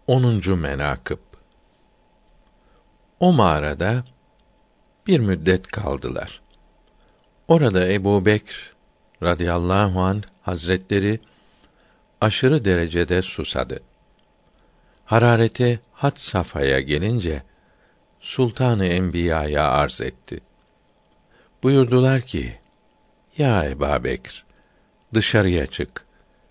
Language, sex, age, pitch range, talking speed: Turkish, male, 60-79, 85-115 Hz, 70 wpm